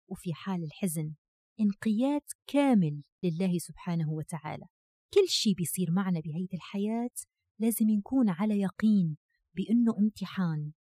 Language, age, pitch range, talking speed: Arabic, 30-49, 175-250 Hz, 110 wpm